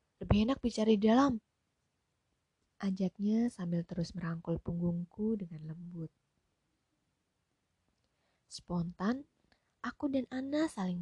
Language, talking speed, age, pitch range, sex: Indonesian, 95 wpm, 20-39, 170-215 Hz, female